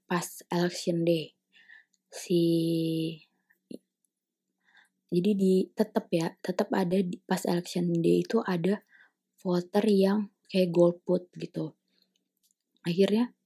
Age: 20-39